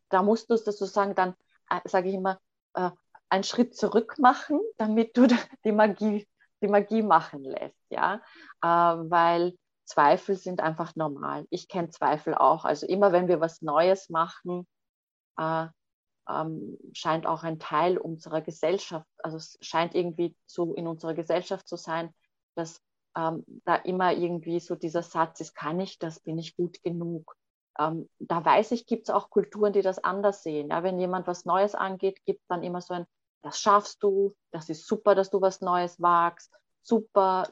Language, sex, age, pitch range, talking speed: German, female, 30-49, 170-205 Hz, 175 wpm